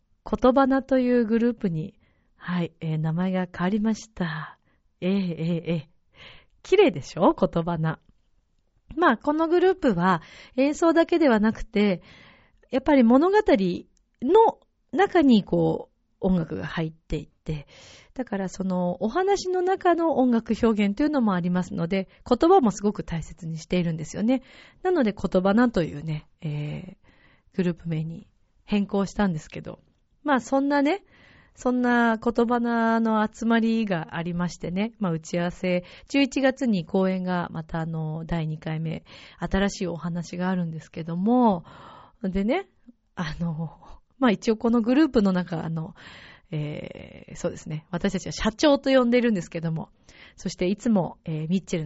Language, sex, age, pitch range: Japanese, female, 40-59, 170-245 Hz